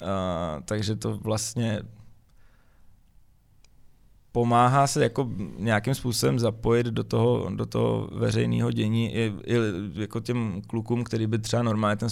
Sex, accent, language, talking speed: male, native, Czech, 130 wpm